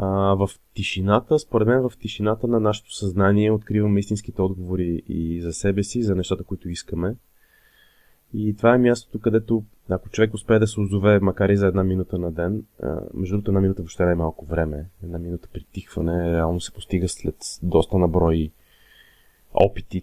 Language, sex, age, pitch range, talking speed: Bulgarian, male, 20-39, 90-110 Hz, 170 wpm